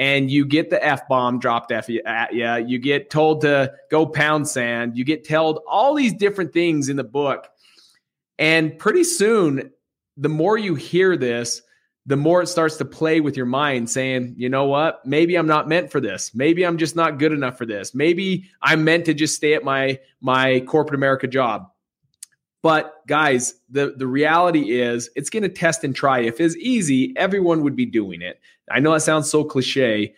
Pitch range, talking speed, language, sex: 130-165 Hz, 195 wpm, English, male